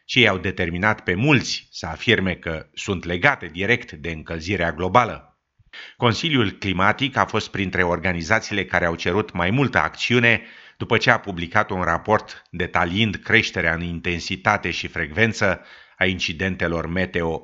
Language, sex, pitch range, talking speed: Romanian, male, 90-115 Hz, 140 wpm